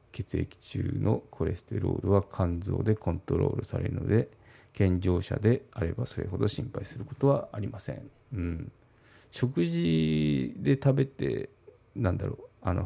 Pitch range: 95-125 Hz